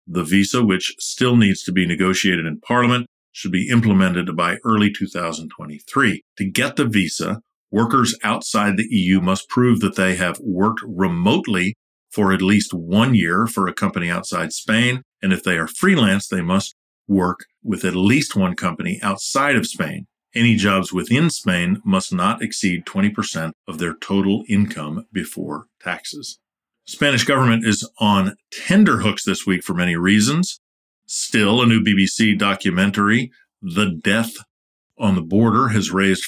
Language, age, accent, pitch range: English, 50-69, American, 90-115 Hz